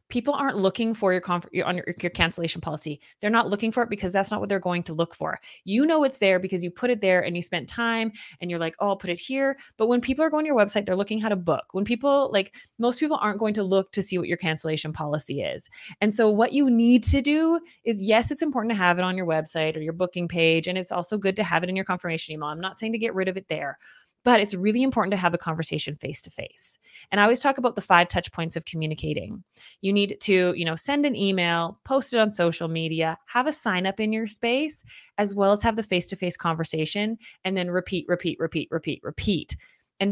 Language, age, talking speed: English, 20-39, 255 wpm